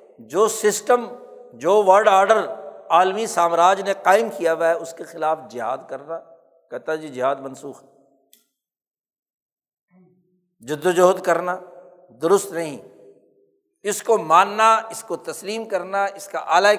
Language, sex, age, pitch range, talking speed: Urdu, male, 60-79, 175-245 Hz, 130 wpm